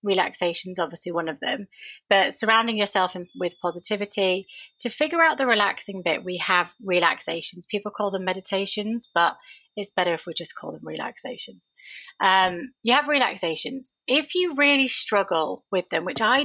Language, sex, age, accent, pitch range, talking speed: English, female, 30-49, British, 180-230 Hz, 165 wpm